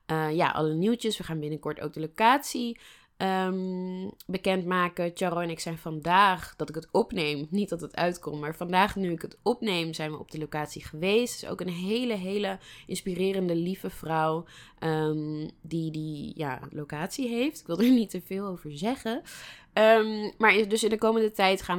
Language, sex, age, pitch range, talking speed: Dutch, female, 20-39, 160-205 Hz, 185 wpm